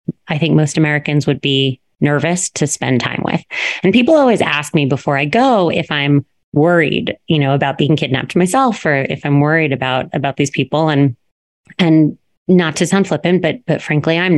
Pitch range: 140-180 Hz